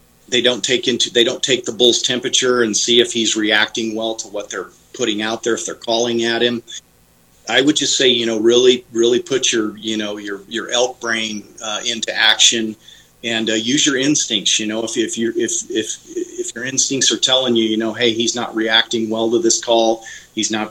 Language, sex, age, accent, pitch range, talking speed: English, male, 40-59, American, 110-120 Hz, 220 wpm